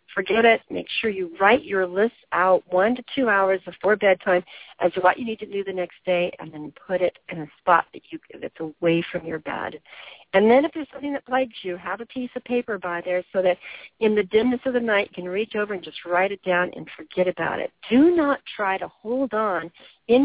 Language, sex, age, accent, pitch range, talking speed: English, female, 50-69, American, 180-240 Hz, 245 wpm